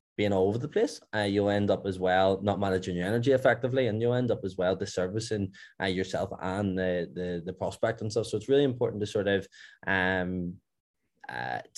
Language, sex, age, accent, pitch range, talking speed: English, male, 20-39, Irish, 100-120 Hz, 210 wpm